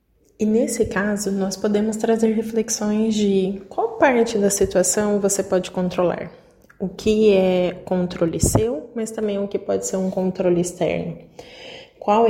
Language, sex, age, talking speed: Portuguese, female, 20-39, 145 wpm